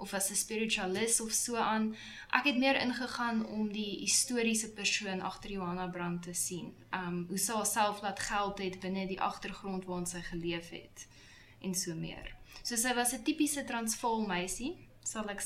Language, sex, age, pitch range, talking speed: English, female, 10-29, 185-215 Hz, 165 wpm